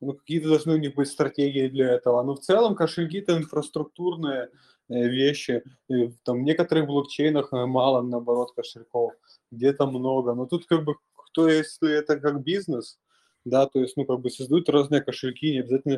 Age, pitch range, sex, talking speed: 20-39, 125-150 Hz, male, 165 wpm